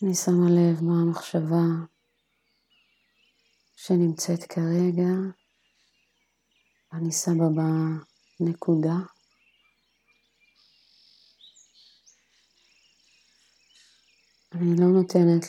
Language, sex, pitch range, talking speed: Hebrew, female, 165-180 Hz, 50 wpm